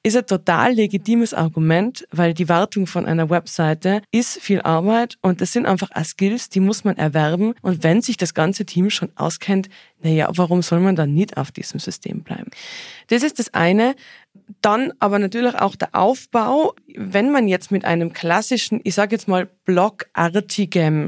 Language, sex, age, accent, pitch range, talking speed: German, female, 20-39, German, 170-205 Hz, 175 wpm